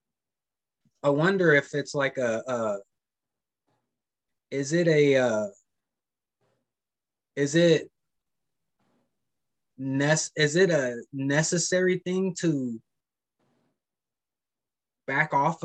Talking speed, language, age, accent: 85 wpm, English, 20-39, American